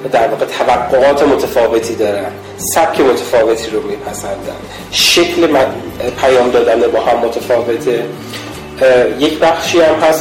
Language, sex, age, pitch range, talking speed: Persian, male, 30-49, 120-170 Hz, 120 wpm